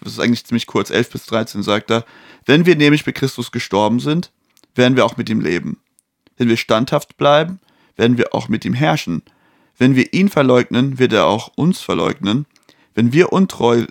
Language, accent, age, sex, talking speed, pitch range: German, German, 30-49, male, 195 wpm, 120-145 Hz